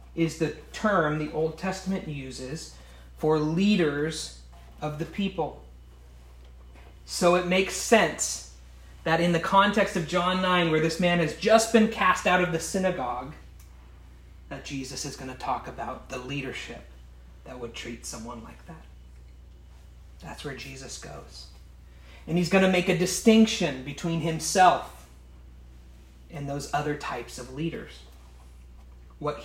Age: 30-49